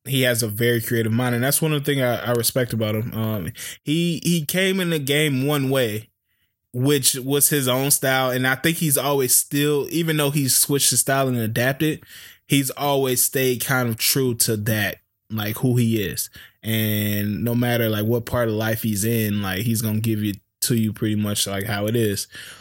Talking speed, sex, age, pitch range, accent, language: 215 wpm, male, 20-39, 110-140 Hz, American, English